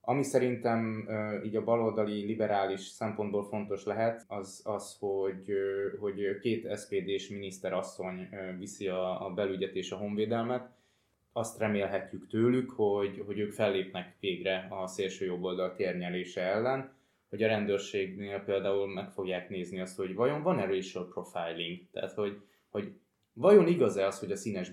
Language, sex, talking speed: Hungarian, male, 140 wpm